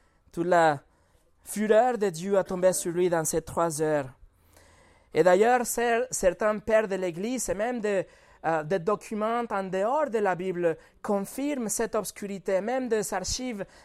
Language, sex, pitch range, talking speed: French, male, 170-220 Hz, 150 wpm